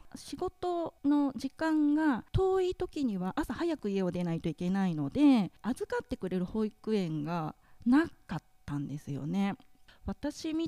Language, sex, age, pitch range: Japanese, female, 20-39, 175-260 Hz